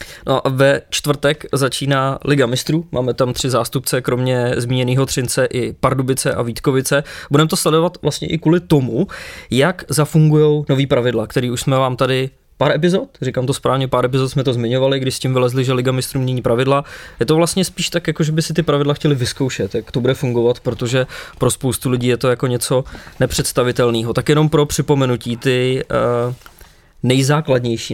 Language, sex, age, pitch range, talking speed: English, male, 20-39, 125-155 Hz, 180 wpm